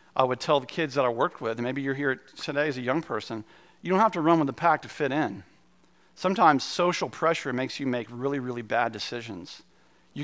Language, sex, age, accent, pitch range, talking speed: English, male, 40-59, American, 140-195 Hz, 235 wpm